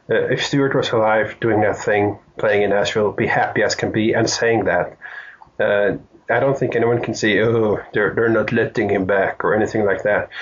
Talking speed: 215 wpm